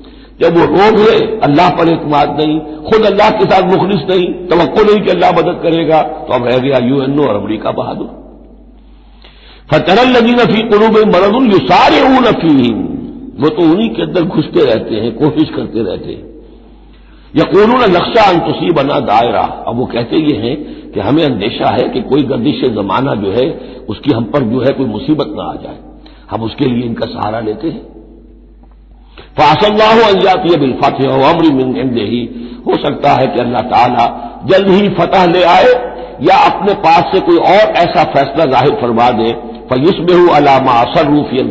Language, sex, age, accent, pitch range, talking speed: Hindi, male, 60-79, native, 130-180 Hz, 180 wpm